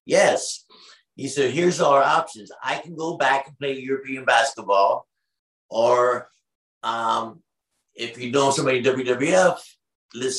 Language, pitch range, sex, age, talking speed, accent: English, 120-145 Hz, male, 50-69, 135 wpm, American